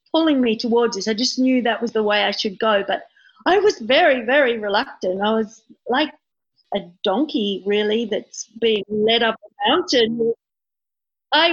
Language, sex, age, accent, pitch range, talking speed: English, female, 50-69, Australian, 215-270 Hz, 170 wpm